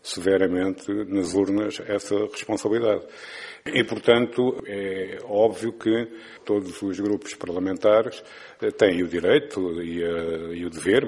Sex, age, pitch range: male, 50-69, 100-120 Hz